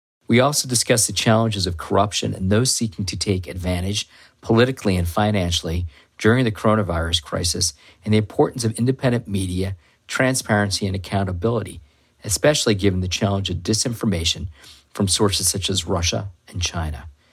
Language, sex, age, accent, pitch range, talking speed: English, male, 50-69, American, 90-110 Hz, 145 wpm